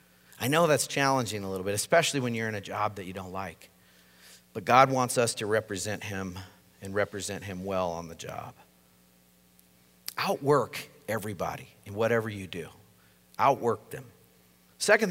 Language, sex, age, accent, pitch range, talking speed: English, male, 50-69, American, 95-145 Hz, 160 wpm